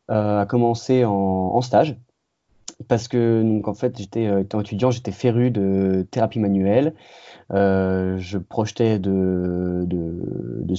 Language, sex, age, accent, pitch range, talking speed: French, male, 20-39, French, 100-120 Hz, 140 wpm